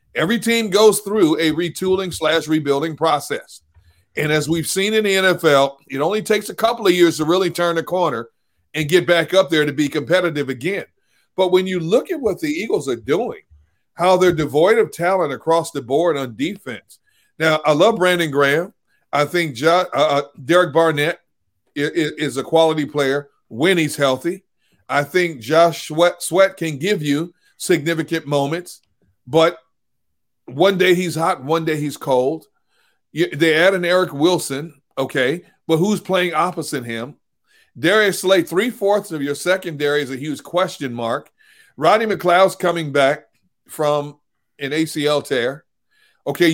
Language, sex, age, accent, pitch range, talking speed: English, male, 40-59, American, 150-185 Hz, 160 wpm